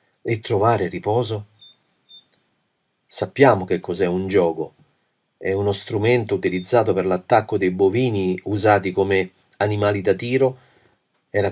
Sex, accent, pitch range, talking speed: male, native, 100-125 Hz, 115 wpm